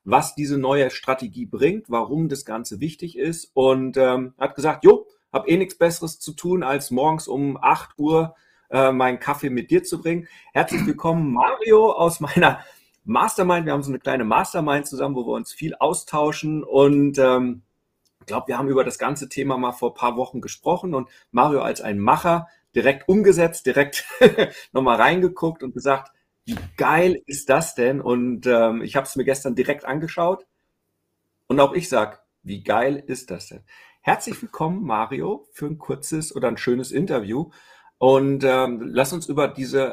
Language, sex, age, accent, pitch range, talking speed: German, male, 40-59, German, 125-160 Hz, 175 wpm